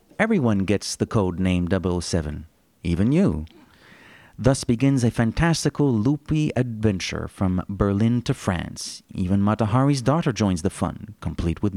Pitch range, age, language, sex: 95-120 Hz, 30-49, English, male